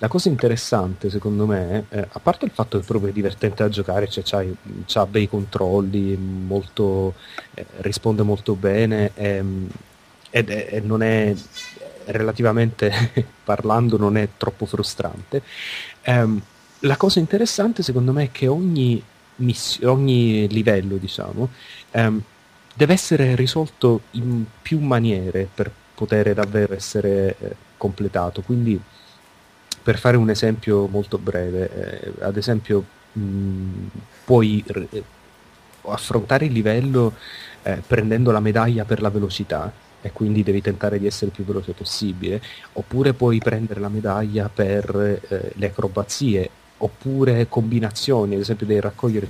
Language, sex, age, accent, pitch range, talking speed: Italian, male, 30-49, native, 100-120 Hz, 135 wpm